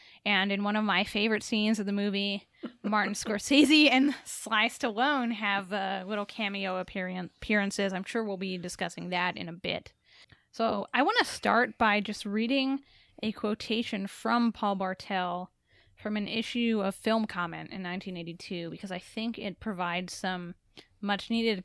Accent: American